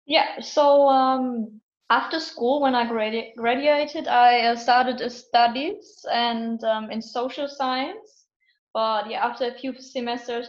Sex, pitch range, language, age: female, 210-250 Hz, English, 20-39